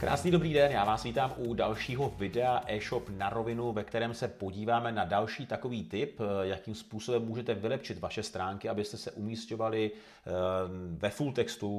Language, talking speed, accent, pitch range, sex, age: Czech, 160 wpm, native, 100-120 Hz, male, 40-59